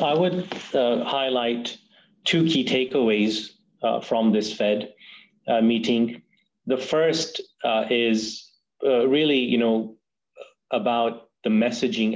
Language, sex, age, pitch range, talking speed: English, male, 30-49, 105-125 Hz, 120 wpm